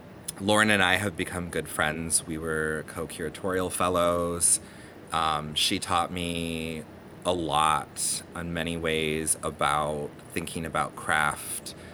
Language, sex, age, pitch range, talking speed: English, male, 30-49, 80-95 Hz, 120 wpm